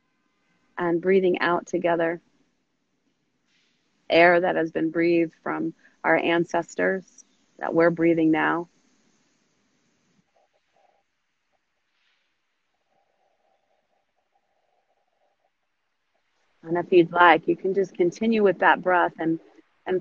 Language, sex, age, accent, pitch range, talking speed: English, female, 30-49, American, 165-200 Hz, 85 wpm